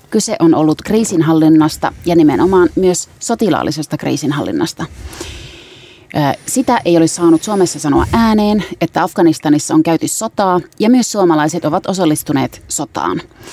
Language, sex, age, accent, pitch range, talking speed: Finnish, female, 30-49, native, 160-210 Hz, 120 wpm